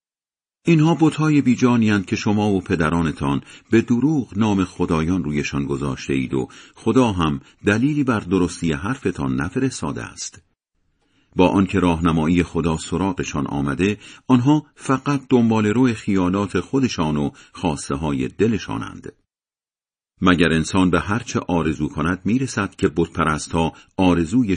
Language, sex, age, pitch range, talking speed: Persian, male, 50-69, 75-110 Hz, 125 wpm